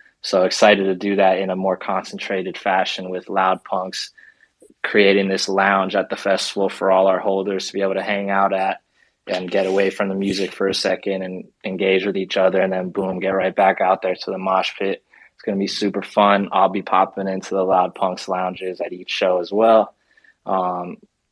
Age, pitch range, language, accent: 20-39, 95-105 Hz, English, American